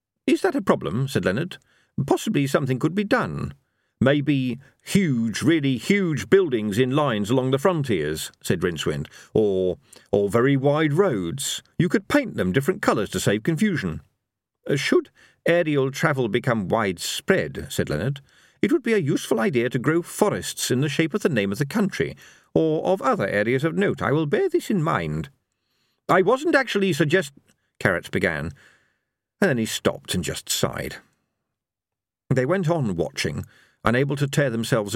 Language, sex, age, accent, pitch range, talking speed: English, male, 50-69, British, 110-170 Hz, 165 wpm